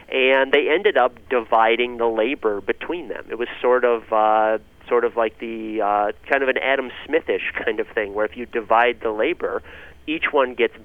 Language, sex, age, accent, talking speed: English, male, 30-49, American, 200 wpm